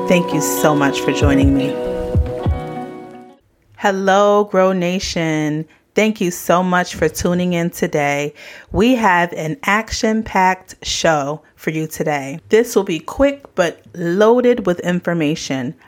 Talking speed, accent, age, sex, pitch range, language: 130 wpm, American, 30-49, female, 160-215 Hz, English